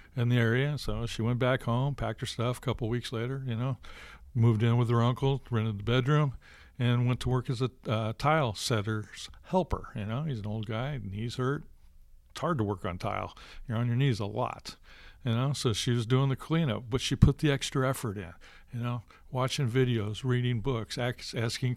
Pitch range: 110-130 Hz